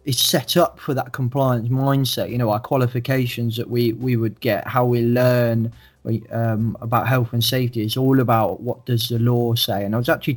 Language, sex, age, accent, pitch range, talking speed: English, male, 20-39, British, 115-130 Hz, 210 wpm